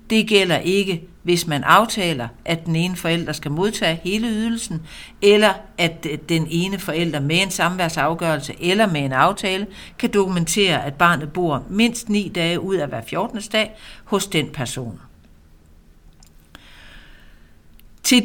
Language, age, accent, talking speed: Danish, 60-79, native, 140 wpm